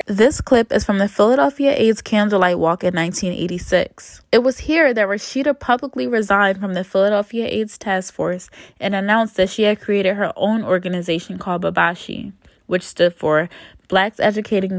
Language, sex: English, female